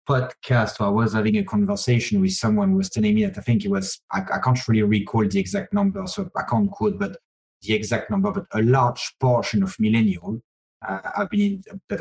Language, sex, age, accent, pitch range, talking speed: English, male, 30-49, French, 110-160 Hz, 220 wpm